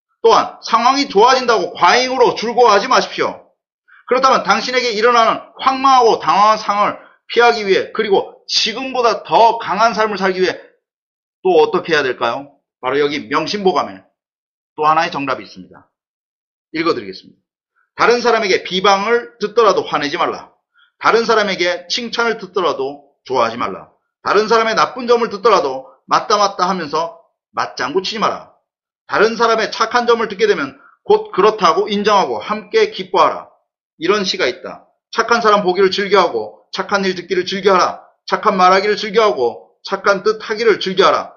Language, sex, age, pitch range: Korean, male, 30-49, 195-260 Hz